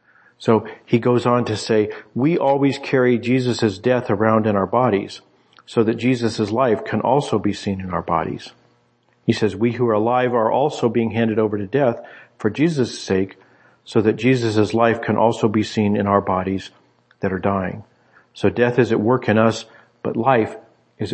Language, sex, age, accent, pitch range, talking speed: English, male, 50-69, American, 105-125 Hz, 185 wpm